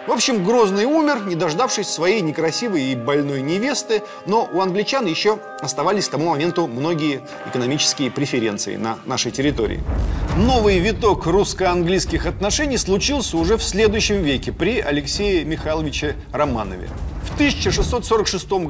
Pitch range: 145-220 Hz